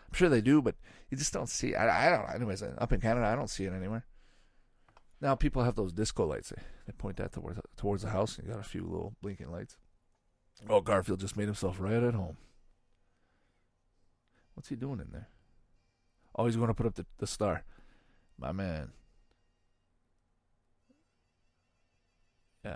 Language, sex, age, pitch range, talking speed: English, male, 40-59, 90-115 Hz, 180 wpm